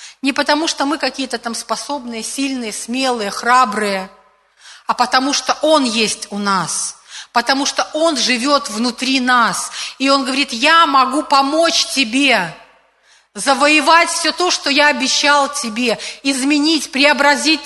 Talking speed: 135 wpm